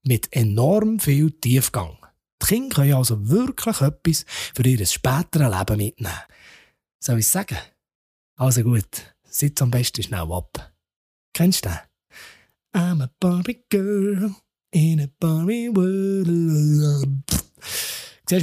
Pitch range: 120-185 Hz